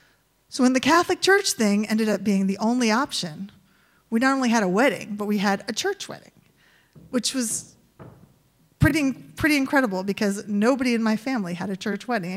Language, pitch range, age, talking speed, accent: English, 195-265 Hz, 30-49, 185 wpm, American